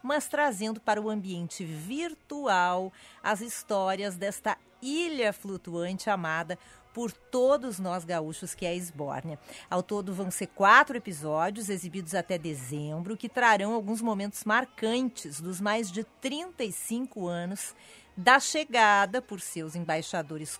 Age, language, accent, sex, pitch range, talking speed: 40-59, Portuguese, Brazilian, female, 175-220 Hz, 125 wpm